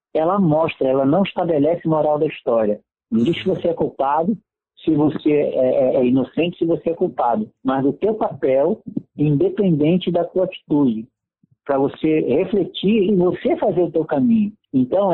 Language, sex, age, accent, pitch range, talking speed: Portuguese, male, 60-79, Brazilian, 140-180 Hz, 160 wpm